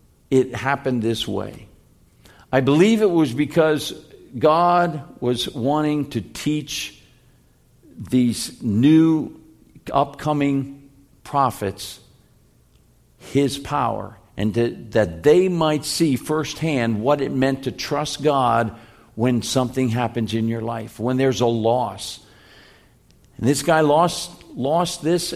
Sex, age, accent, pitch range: male, 50-69, American, 125-160 Hz